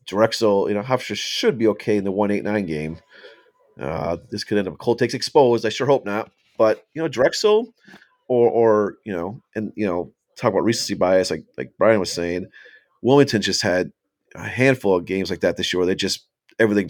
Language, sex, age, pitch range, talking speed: English, male, 30-49, 95-125 Hz, 215 wpm